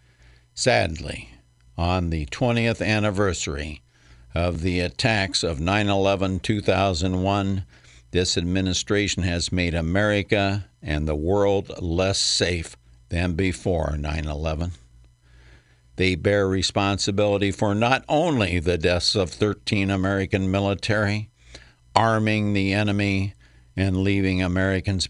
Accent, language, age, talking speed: American, English, 60-79, 100 wpm